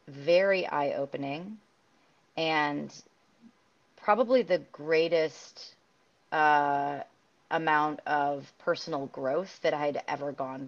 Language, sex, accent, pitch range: English, female, American, 145-165 Hz